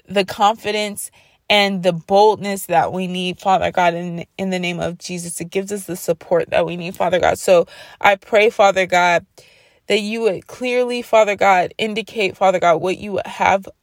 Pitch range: 175-205 Hz